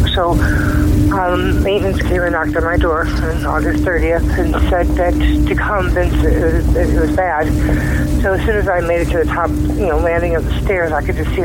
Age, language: 60-79, English